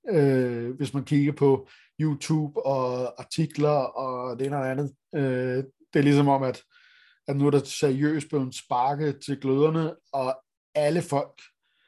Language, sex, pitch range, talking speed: Danish, male, 135-160 Hz, 165 wpm